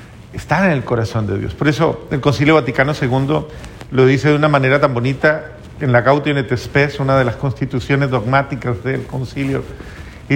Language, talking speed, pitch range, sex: Spanish, 185 wpm, 125-155 Hz, male